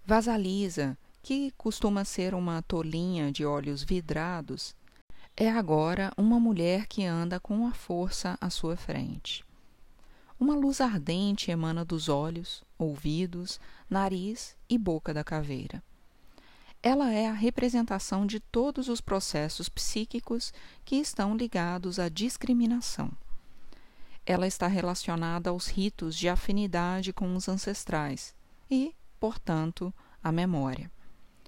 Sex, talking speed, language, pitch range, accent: female, 115 wpm, Portuguese, 160-215 Hz, Brazilian